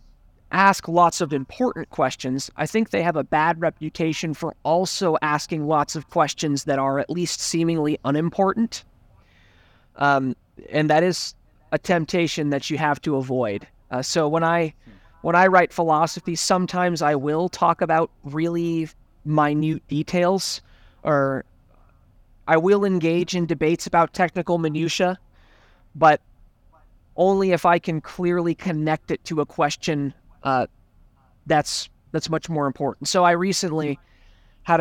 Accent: American